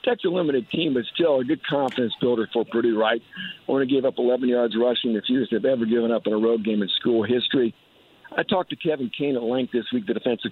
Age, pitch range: 50-69, 120-150 Hz